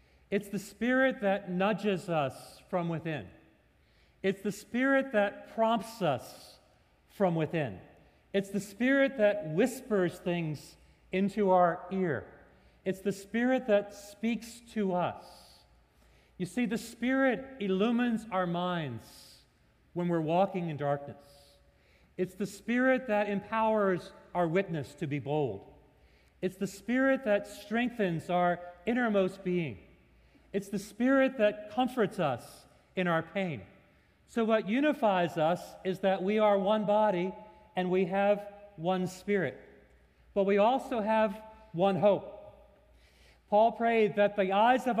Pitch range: 165-215 Hz